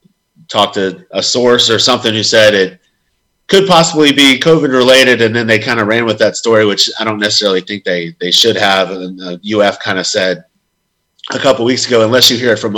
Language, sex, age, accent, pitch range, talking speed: English, male, 30-49, American, 90-115 Hz, 225 wpm